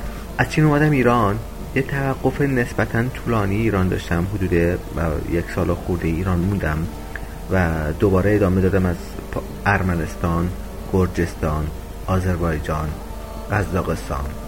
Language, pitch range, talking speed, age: Persian, 80-105 Hz, 100 wpm, 30-49